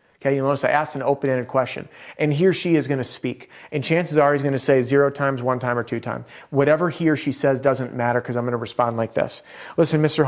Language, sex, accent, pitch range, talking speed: English, male, American, 125-150 Hz, 270 wpm